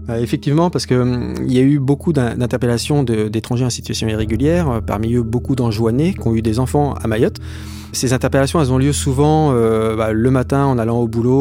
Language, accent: French, French